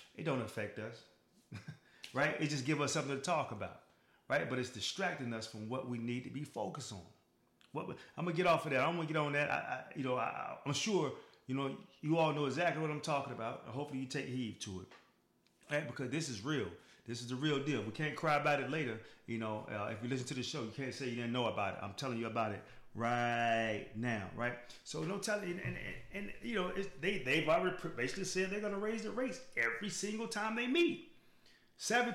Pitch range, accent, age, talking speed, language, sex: 120-185 Hz, American, 30-49, 245 wpm, English, male